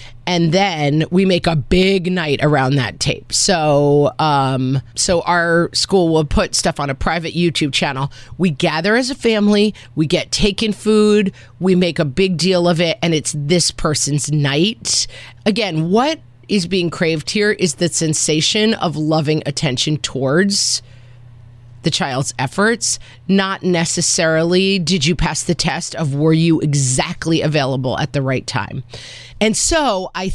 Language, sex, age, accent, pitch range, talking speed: English, female, 30-49, American, 140-180 Hz, 155 wpm